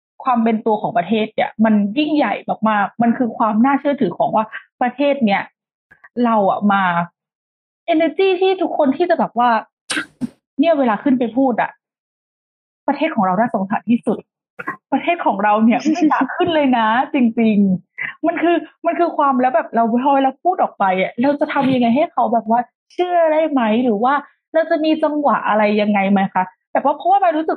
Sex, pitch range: female, 220-295 Hz